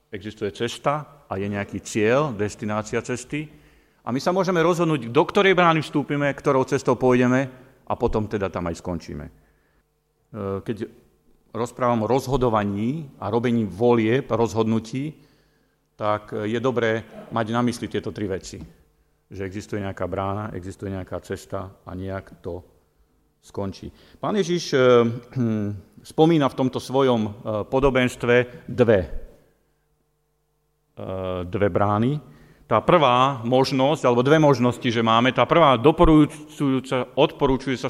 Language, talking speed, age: Slovak, 120 wpm, 40-59